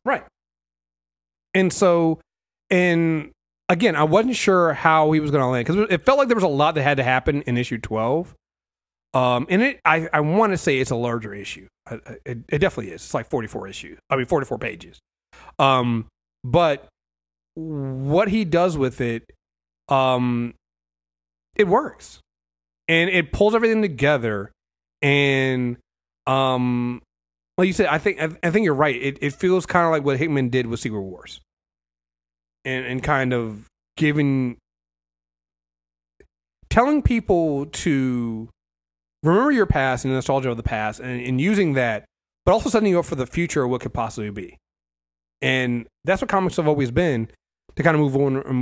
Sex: male